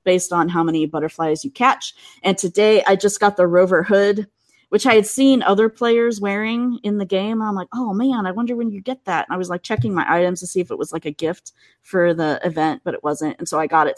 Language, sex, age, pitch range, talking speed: English, female, 20-39, 165-225 Hz, 260 wpm